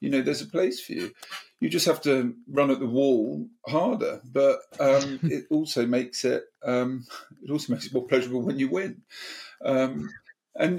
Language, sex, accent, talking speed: English, male, British, 190 wpm